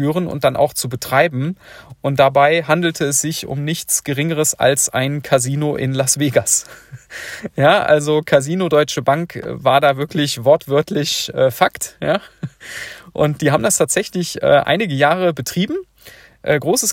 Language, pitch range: German, 135-170 Hz